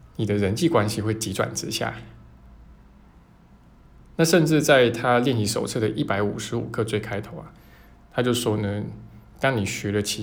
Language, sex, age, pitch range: Chinese, male, 20-39, 100-120 Hz